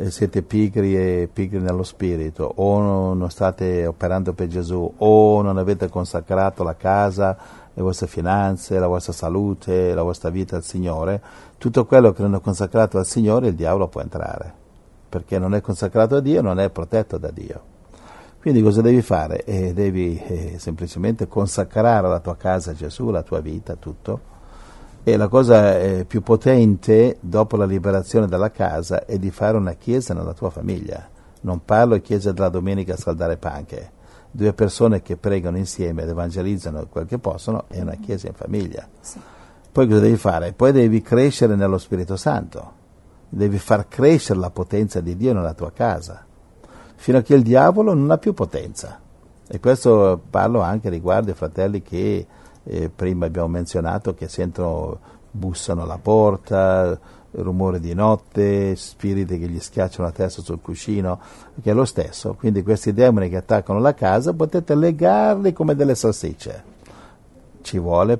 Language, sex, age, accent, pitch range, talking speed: Italian, male, 50-69, native, 90-110 Hz, 165 wpm